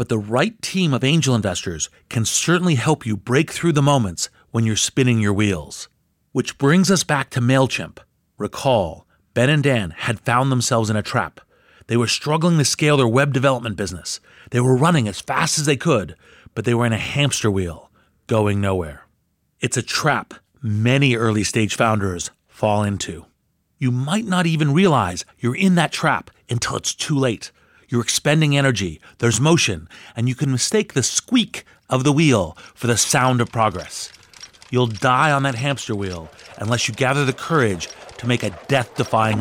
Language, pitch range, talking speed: English, 105-140 Hz, 180 wpm